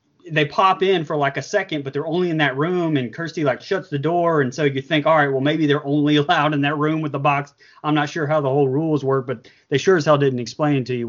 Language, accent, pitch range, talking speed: English, American, 135-160 Hz, 290 wpm